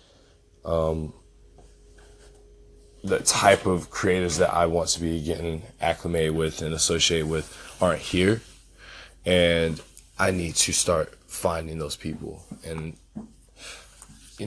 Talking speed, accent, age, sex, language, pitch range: 115 wpm, American, 20-39, male, English, 85-95 Hz